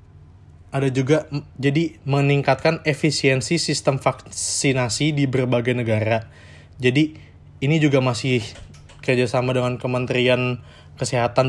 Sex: male